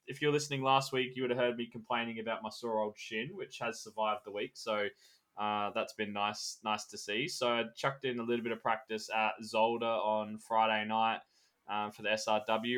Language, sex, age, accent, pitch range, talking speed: English, male, 20-39, Australian, 105-125 Hz, 220 wpm